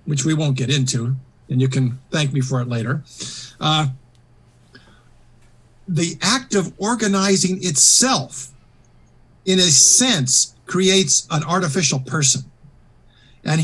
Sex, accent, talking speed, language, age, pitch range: male, American, 120 wpm, English, 50-69, 130-170 Hz